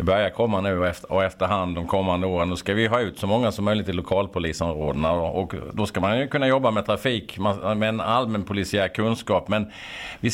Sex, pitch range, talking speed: male, 100-120 Hz, 205 wpm